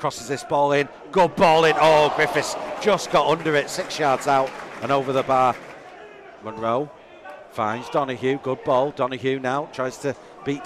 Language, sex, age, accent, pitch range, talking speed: English, male, 40-59, British, 130-170 Hz, 170 wpm